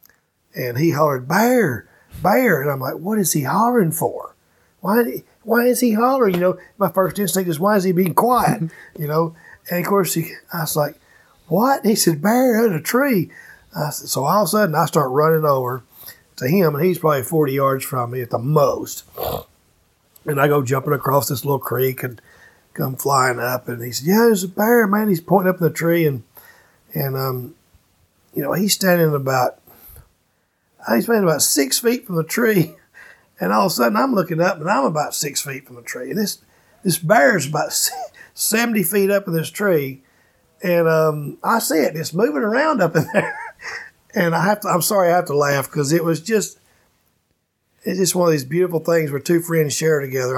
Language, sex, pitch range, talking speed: English, male, 135-200 Hz, 210 wpm